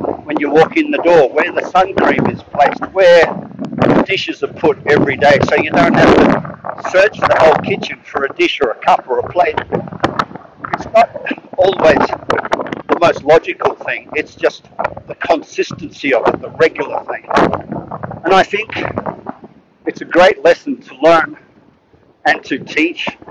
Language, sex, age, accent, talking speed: English, male, 50-69, Australian, 165 wpm